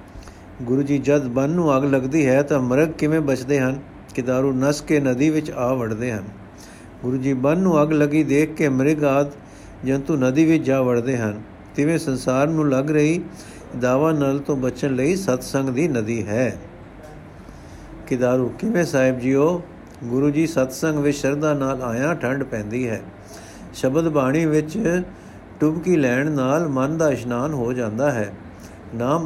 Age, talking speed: 60-79, 160 wpm